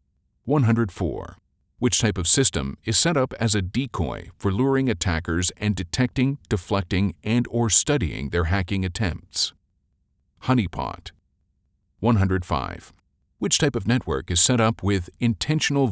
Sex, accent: male, American